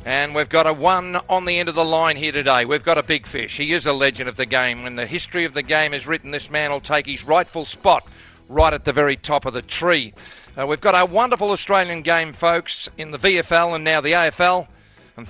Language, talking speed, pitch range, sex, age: English, 250 wpm, 150-185 Hz, male, 50-69